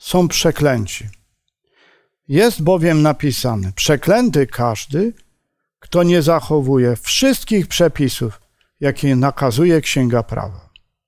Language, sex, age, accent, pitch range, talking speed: Polish, male, 50-69, native, 135-195 Hz, 85 wpm